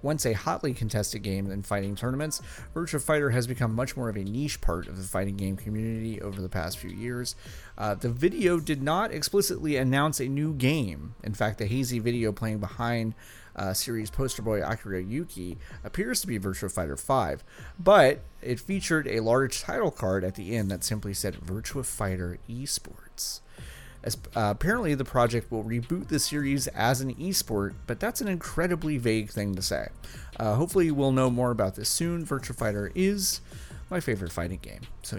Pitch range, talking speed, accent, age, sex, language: 100-140 Hz, 185 wpm, American, 30-49, male, English